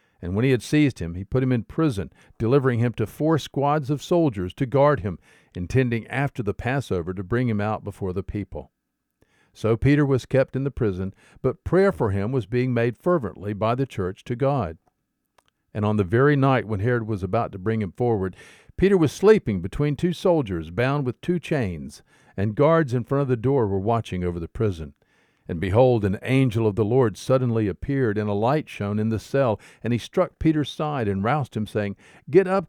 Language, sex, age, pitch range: English, male, 50-69, 100-140 Hz